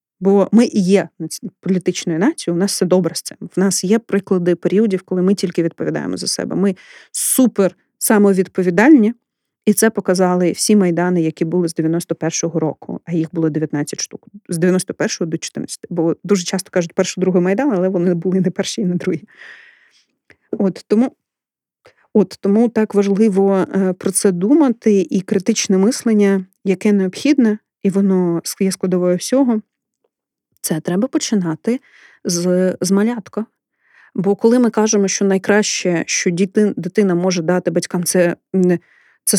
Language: Ukrainian